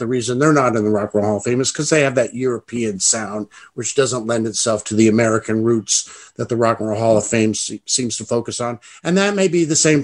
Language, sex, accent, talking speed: English, male, American, 275 wpm